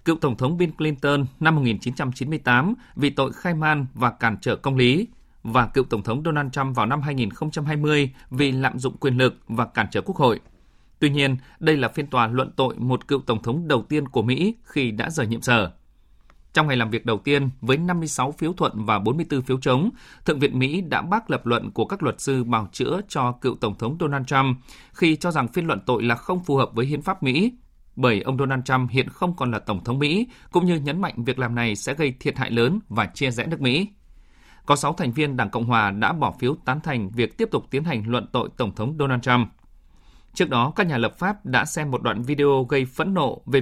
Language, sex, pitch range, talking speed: Vietnamese, male, 120-150 Hz, 235 wpm